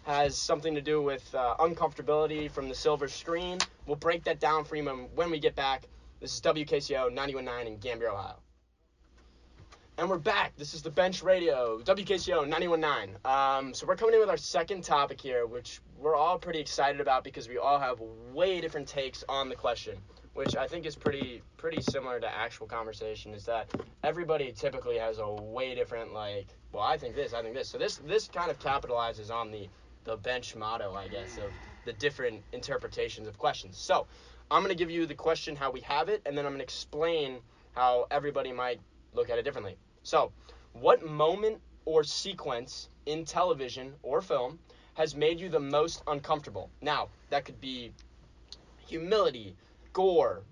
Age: 20-39